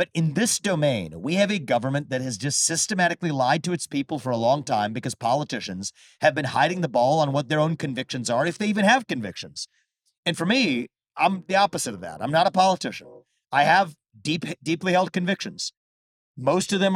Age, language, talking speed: 40-59, English, 210 wpm